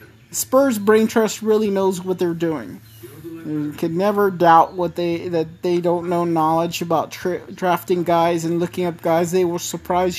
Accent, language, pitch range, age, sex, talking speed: American, English, 165-195 Hz, 40-59, male, 175 wpm